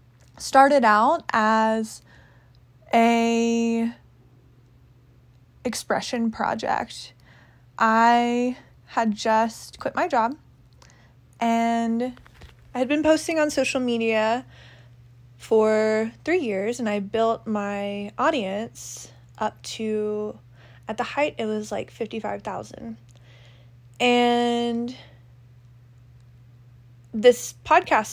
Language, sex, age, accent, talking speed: English, female, 20-39, American, 85 wpm